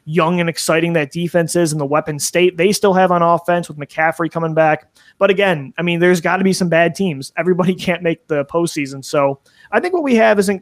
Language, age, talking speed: English, 20-39, 235 wpm